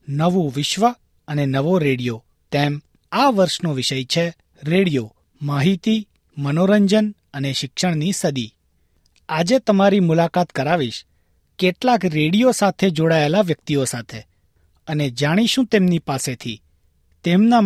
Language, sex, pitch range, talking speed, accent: Gujarati, male, 135-195 Hz, 105 wpm, native